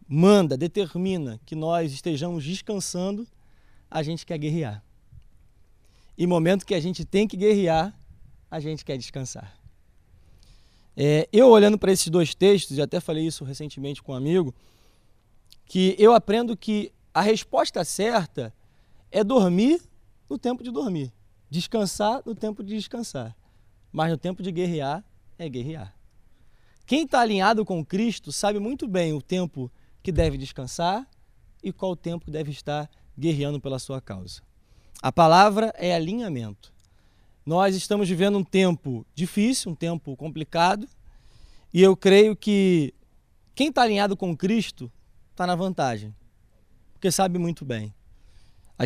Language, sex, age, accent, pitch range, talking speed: Portuguese, male, 20-39, Brazilian, 140-200 Hz, 140 wpm